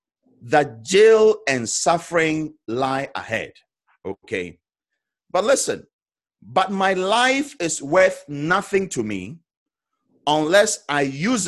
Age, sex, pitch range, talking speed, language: 50-69, male, 120-175 Hz, 105 wpm, English